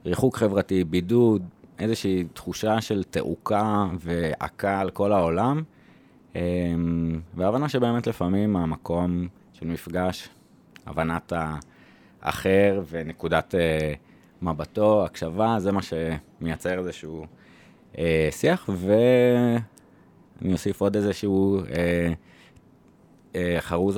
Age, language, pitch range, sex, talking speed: 20-39, Hebrew, 80-105 Hz, male, 80 wpm